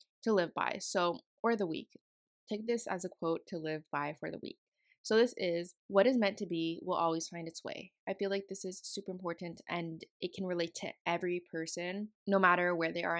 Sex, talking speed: female, 225 wpm